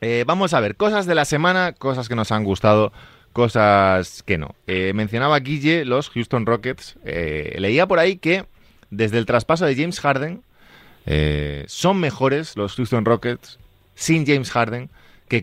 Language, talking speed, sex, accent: Spanish, 165 wpm, male, Spanish